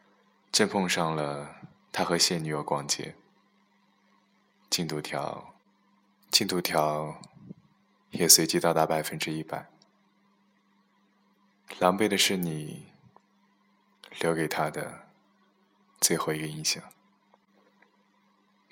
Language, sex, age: Chinese, male, 20-39